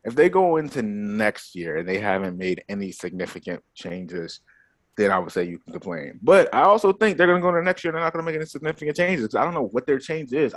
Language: English